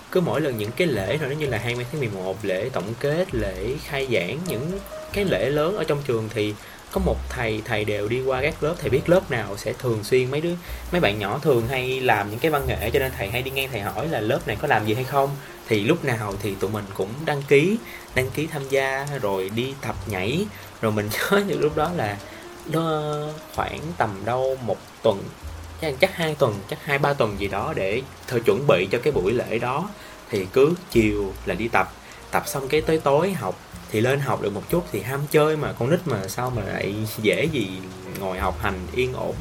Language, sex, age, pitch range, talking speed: Vietnamese, male, 20-39, 110-150 Hz, 235 wpm